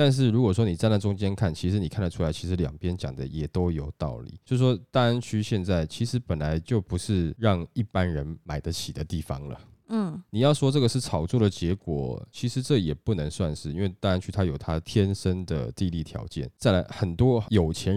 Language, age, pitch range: Chinese, 20-39, 80-105 Hz